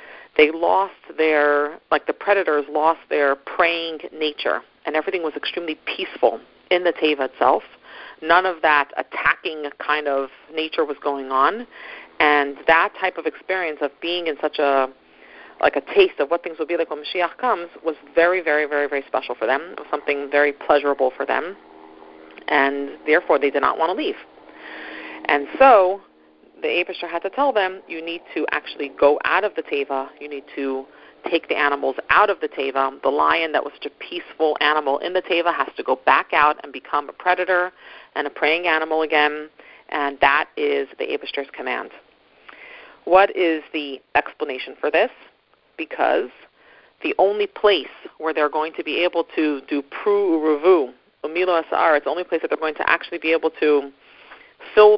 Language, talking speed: English, 180 wpm